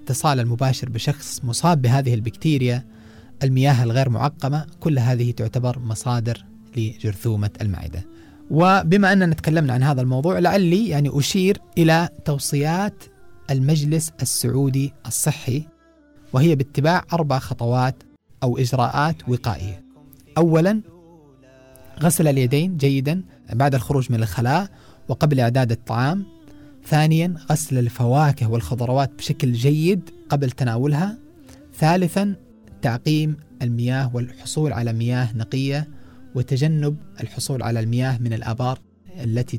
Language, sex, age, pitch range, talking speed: English, male, 30-49, 115-150 Hz, 105 wpm